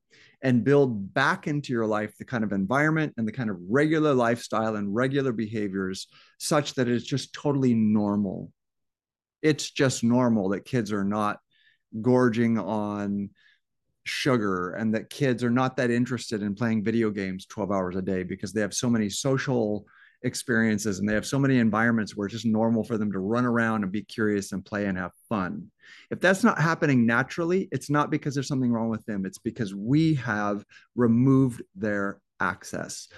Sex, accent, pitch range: male, American, 100-130 Hz